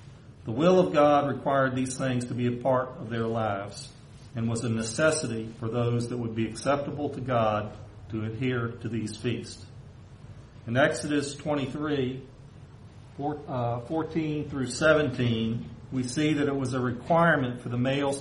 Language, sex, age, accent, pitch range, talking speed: English, male, 40-59, American, 115-140 Hz, 155 wpm